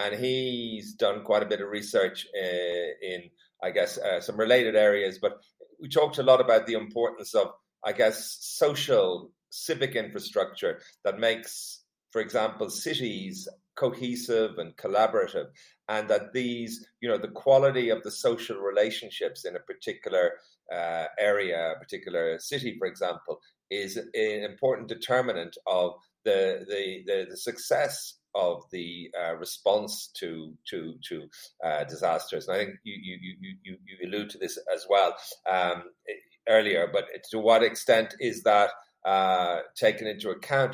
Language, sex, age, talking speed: English, male, 40-59, 150 wpm